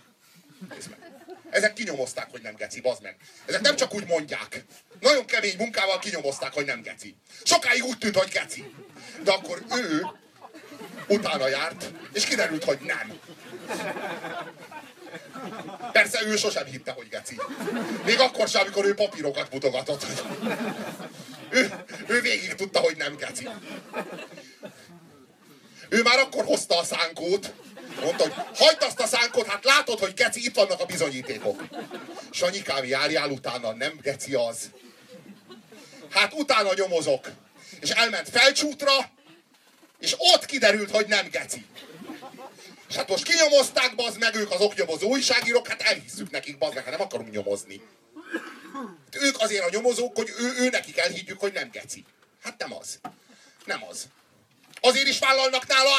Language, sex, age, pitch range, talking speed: Hungarian, male, 40-59, 190-270 Hz, 140 wpm